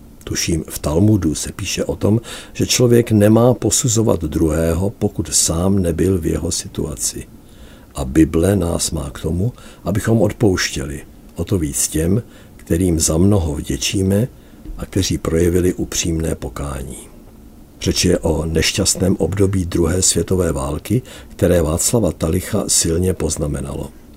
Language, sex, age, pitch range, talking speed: Czech, male, 60-79, 80-100 Hz, 130 wpm